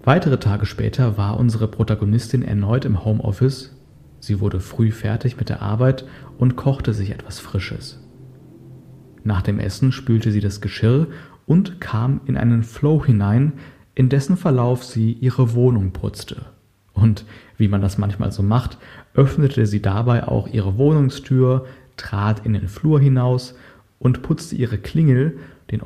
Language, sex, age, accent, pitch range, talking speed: German, male, 40-59, German, 105-130 Hz, 150 wpm